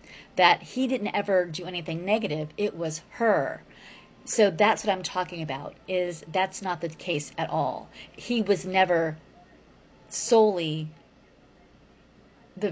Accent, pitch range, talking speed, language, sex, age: American, 165-215 Hz, 130 wpm, English, female, 30-49